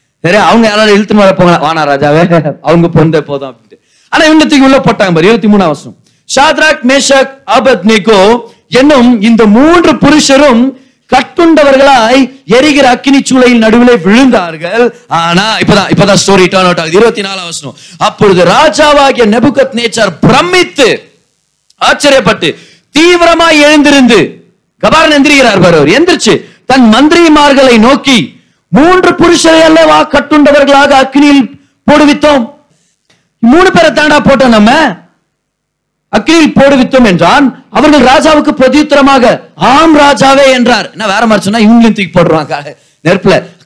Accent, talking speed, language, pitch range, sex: native, 40 wpm, Tamil, 215-290 Hz, male